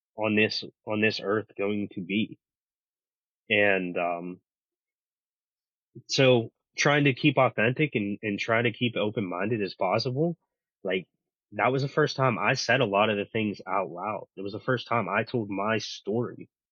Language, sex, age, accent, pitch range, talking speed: English, male, 20-39, American, 100-125 Hz, 170 wpm